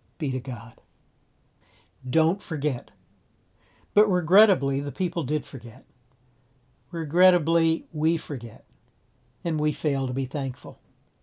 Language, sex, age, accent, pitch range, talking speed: English, male, 60-79, American, 130-175 Hz, 105 wpm